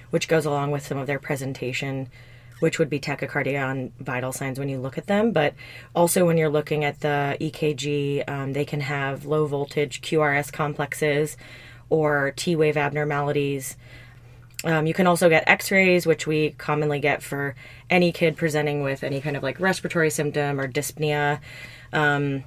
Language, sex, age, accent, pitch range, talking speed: English, female, 20-39, American, 135-155 Hz, 170 wpm